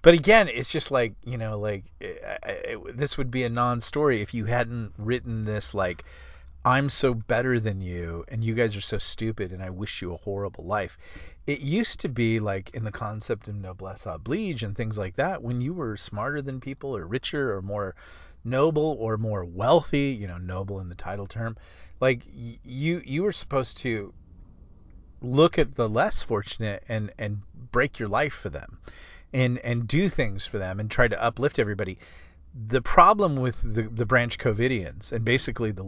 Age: 30-49